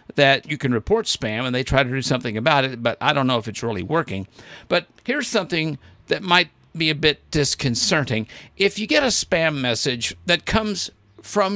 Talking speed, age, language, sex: 200 wpm, 50-69, English, male